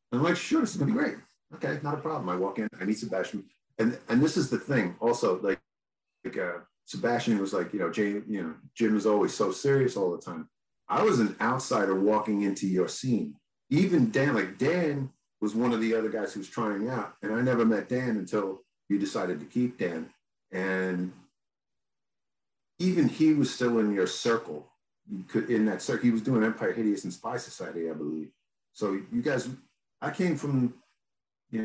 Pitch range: 95-120 Hz